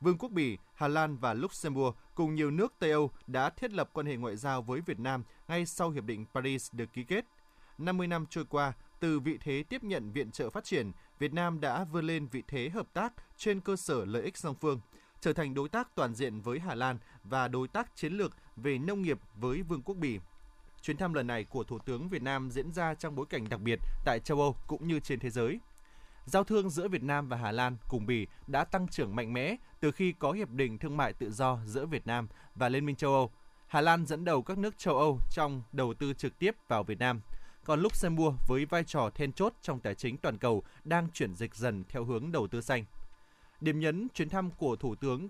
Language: Vietnamese